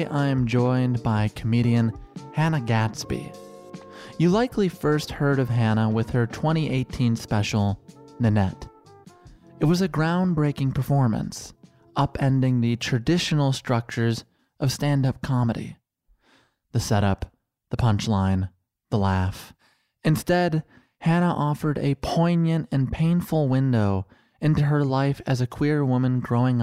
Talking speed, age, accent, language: 115 wpm, 20-39, American, English